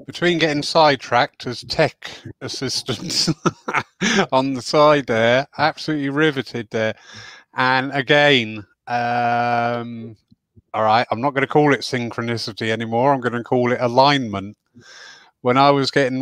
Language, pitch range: English, 110-130 Hz